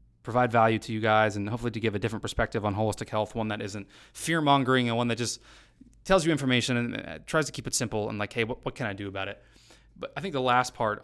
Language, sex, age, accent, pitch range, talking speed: English, male, 20-39, American, 110-135 Hz, 260 wpm